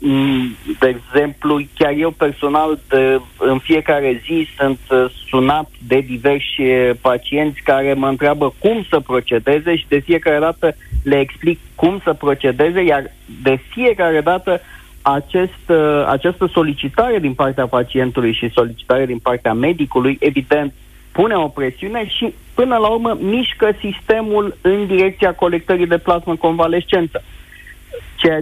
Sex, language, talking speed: male, Romanian, 125 wpm